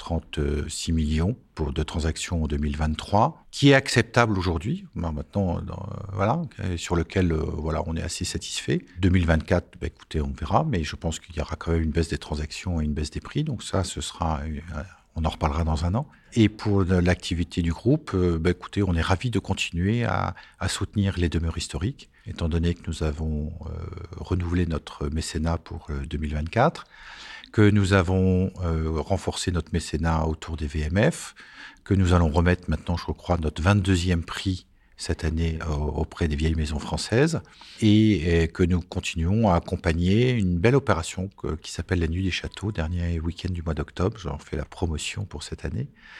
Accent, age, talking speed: French, 50-69, 180 wpm